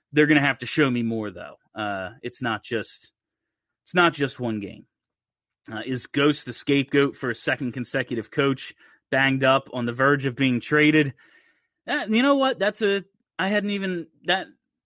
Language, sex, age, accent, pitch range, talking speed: English, male, 30-49, American, 125-145 Hz, 185 wpm